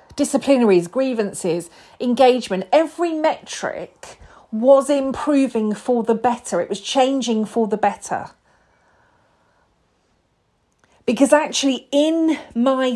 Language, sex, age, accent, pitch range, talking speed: English, female, 40-59, British, 185-265 Hz, 95 wpm